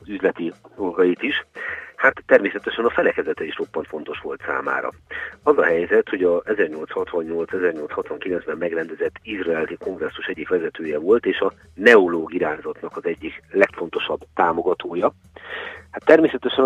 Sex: male